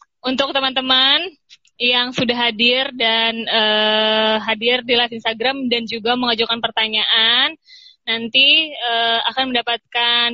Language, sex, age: Indonesian, female, 20-39